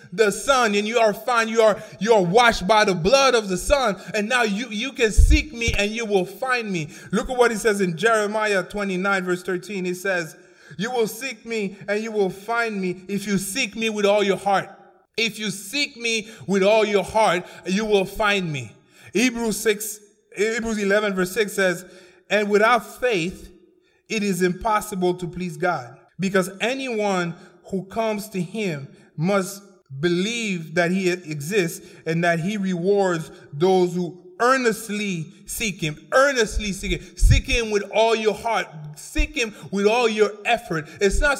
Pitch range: 185-225 Hz